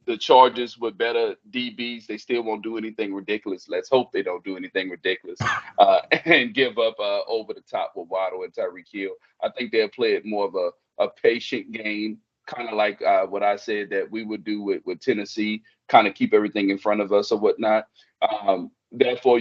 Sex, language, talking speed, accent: male, English, 210 wpm, American